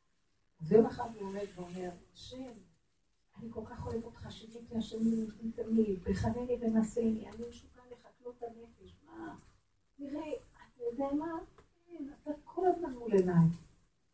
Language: Hebrew